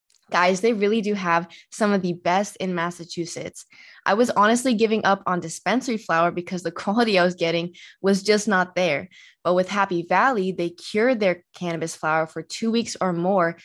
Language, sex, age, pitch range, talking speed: English, female, 20-39, 175-225 Hz, 190 wpm